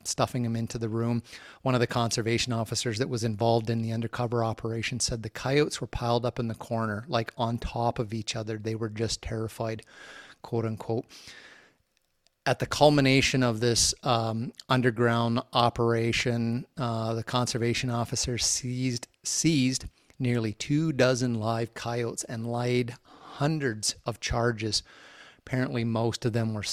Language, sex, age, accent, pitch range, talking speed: English, male, 30-49, American, 115-125 Hz, 150 wpm